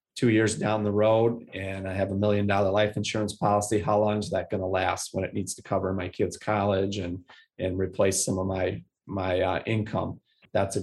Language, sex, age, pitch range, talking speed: English, male, 30-49, 100-115 Hz, 215 wpm